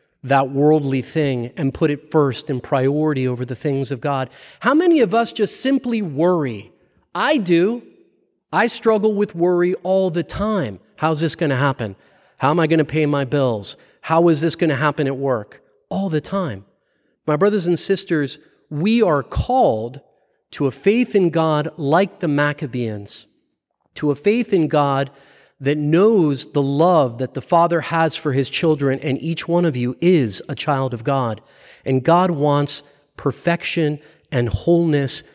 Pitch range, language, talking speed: 135-170 Hz, English, 170 wpm